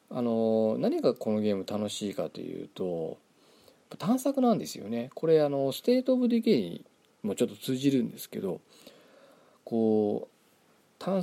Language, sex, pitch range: Japanese, male, 115-190 Hz